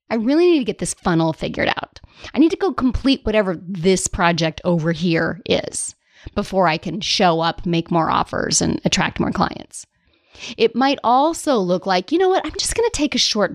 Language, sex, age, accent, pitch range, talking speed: English, female, 30-49, American, 180-265 Hz, 210 wpm